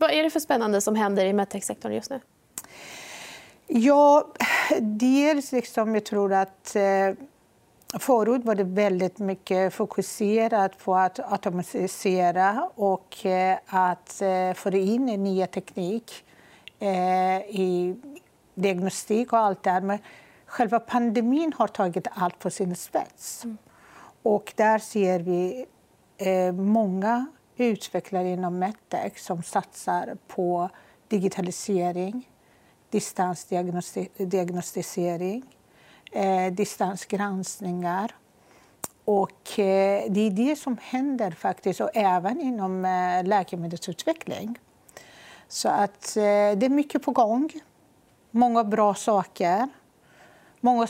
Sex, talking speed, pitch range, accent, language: female, 100 wpm, 185-230 Hz, native, Swedish